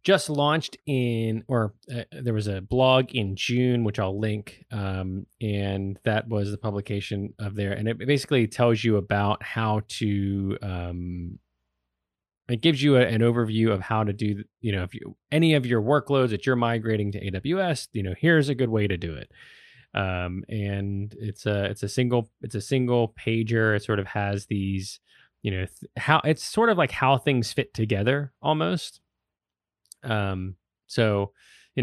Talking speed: 180 wpm